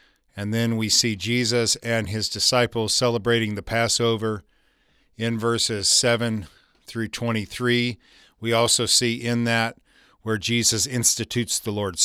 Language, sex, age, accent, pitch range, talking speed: English, male, 40-59, American, 105-120 Hz, 130 wpm